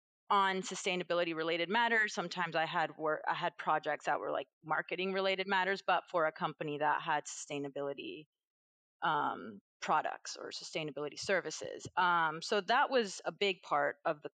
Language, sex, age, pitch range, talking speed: English, female, 30-49, 155-185 Hz, 160 wpm